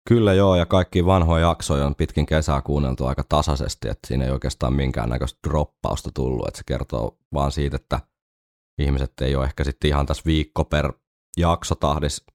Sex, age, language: male, 20-39, Finnish